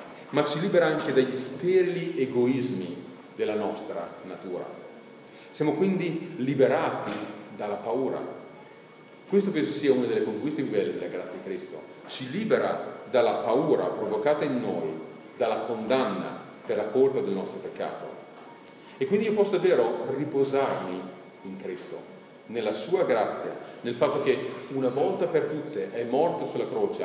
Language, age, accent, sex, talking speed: Italian, 40-59, native, male, 140 wpm